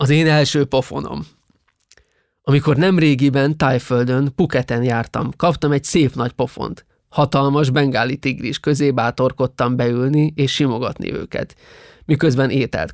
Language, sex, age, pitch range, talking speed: Hungarian, male, 20-39, 125-145 Hz, 115 wpm